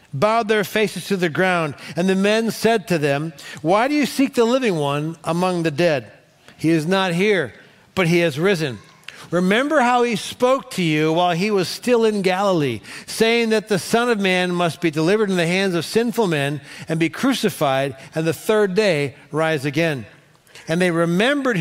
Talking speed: 190 wpm